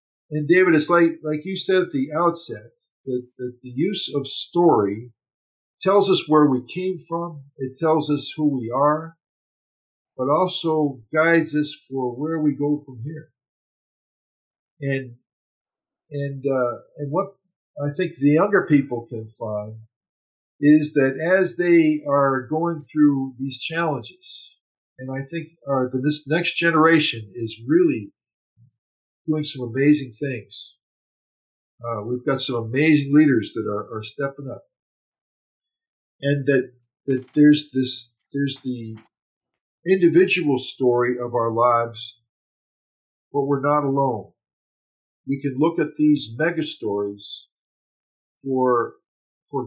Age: 50-69